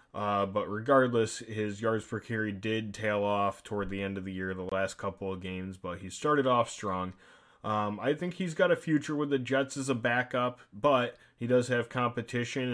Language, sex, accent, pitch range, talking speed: English, male, American, 100-130 Hz, 205 wpm